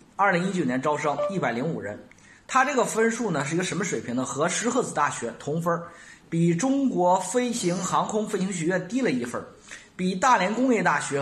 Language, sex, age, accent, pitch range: Chinese, male, 30-49, native, 155-230 Hz